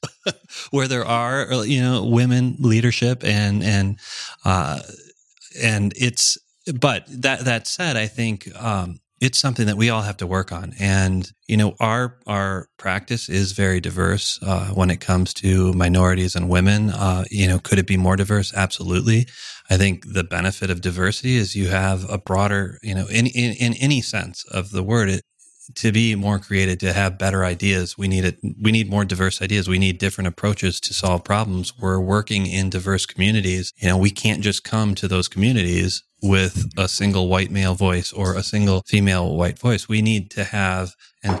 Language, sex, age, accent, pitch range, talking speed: English, male, 30-49, American, 95-110 Hz, 185 wpm